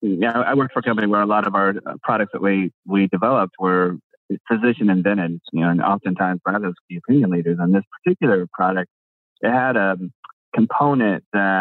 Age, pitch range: 30-49, 90-110 Hz